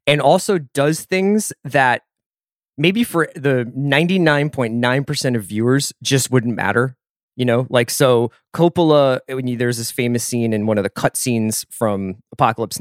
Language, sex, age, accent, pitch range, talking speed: English, male, 20-39, American, 120-165 Hz, 170 wpm